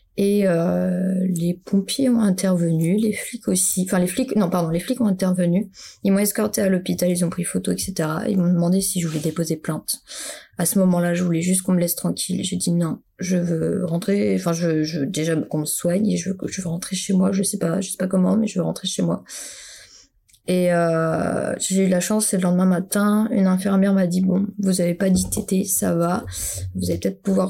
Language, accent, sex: French, French, female